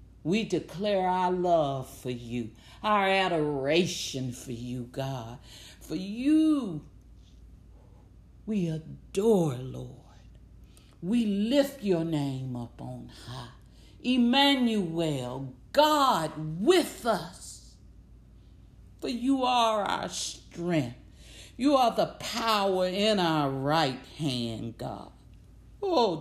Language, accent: English, American